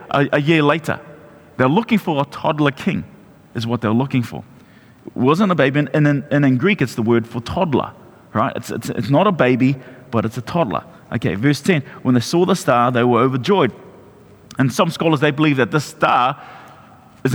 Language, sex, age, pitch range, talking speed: English, male, 30-49, 135-170 Hz, 190 wpm